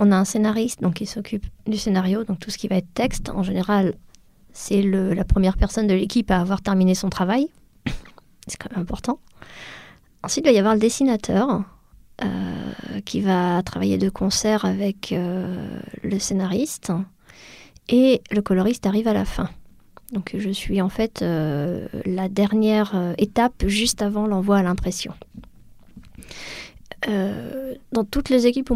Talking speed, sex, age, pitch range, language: 160 wpm, female, 20-39, 190-220 Hz, French